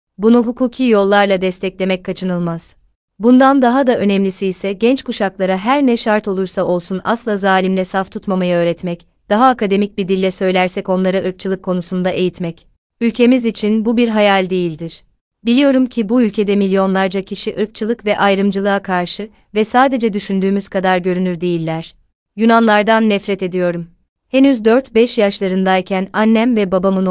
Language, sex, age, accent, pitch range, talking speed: Turkish, female, 30-49, native, 185-220 Hz, 135 wpm